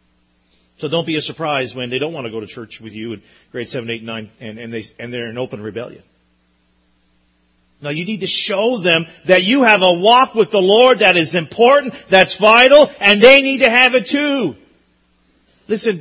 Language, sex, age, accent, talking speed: English, male, 40-59, American, 210 wpm